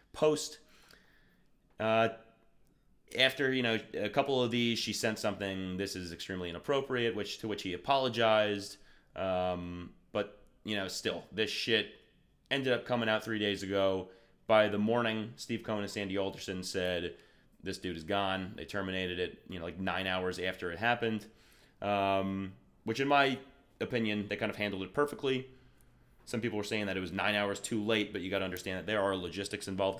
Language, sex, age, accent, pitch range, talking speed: English, male, 30-49, American, 95-115 Hz, 180 wpm